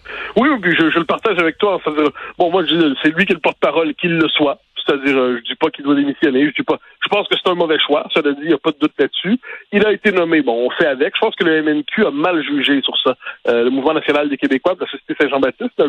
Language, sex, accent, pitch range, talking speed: French, male, French, 135-195 Hz, 270 wpm